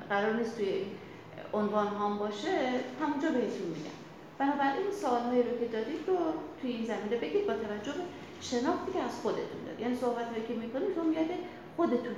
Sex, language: female, Persian